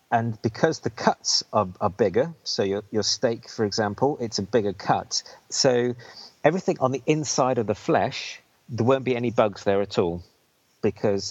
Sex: male